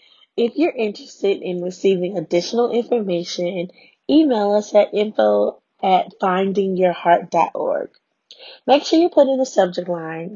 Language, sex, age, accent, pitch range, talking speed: English, female, 20-39, American, 180-250 Hz, 115 wpm